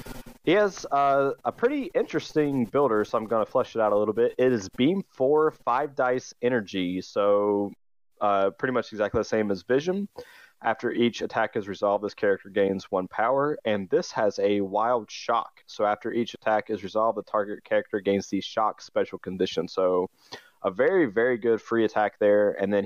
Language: English